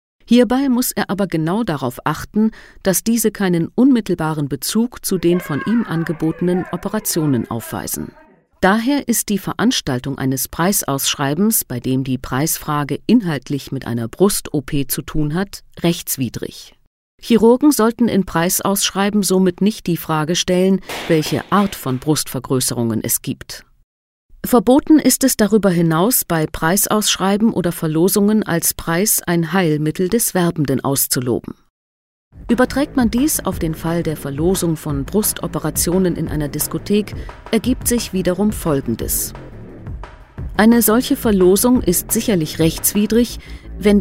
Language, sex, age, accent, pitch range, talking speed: German, female, 40-59, German, 150-215 Hz, 125 wpm